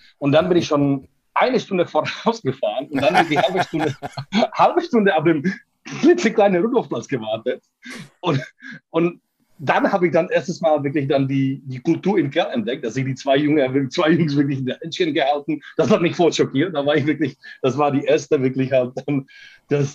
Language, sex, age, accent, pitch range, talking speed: German, male, 40-59, German, 130-155 Hz, 205 wpm